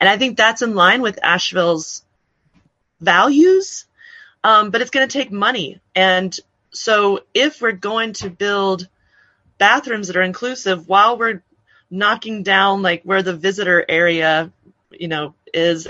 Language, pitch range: English, 175-215 Hz